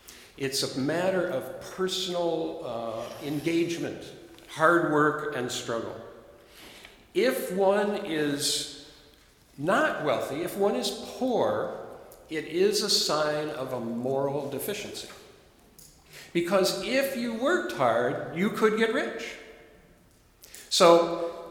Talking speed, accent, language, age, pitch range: 105 wpm, American, English, 50-69, 135-205 Hz